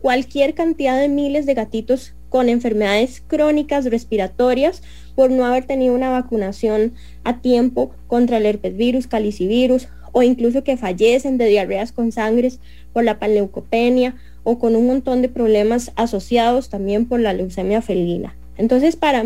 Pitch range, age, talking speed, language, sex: 210-275 Hz, 10-29, 145 wpm, English, female